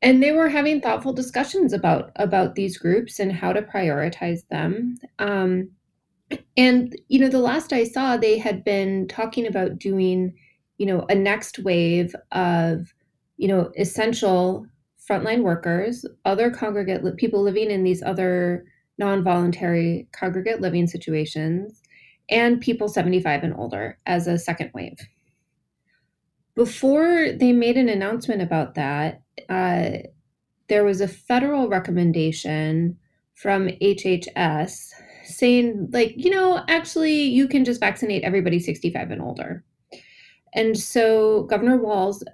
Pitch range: 175-230 Hz